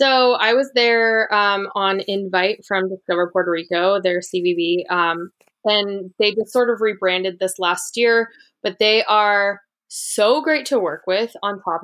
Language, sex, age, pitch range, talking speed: English, female, 20-39, 185-220 Hz, 165 wpm